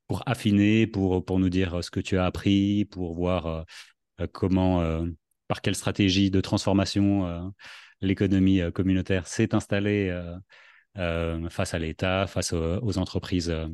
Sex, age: male, 30-49